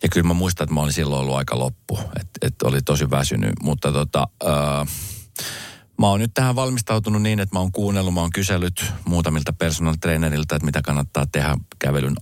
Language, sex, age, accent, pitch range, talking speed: Finnish, male, 40-59, native, 70-85 Hz, 195 wpm